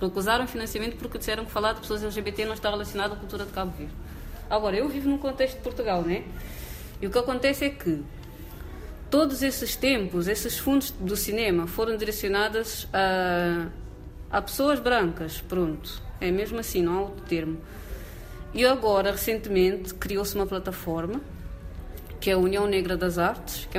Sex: female